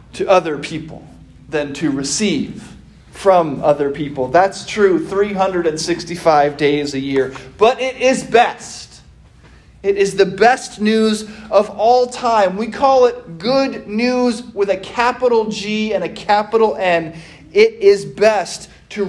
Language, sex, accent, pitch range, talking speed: English, male, American, 150-215 Hz, 140 wpm